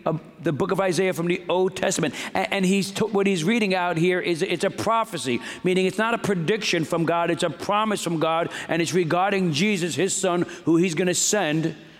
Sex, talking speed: male, 220 wpm